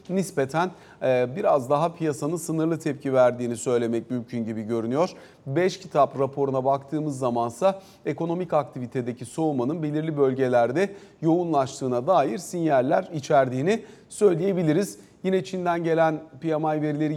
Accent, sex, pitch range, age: native, male, 140-175 Hz, 40-59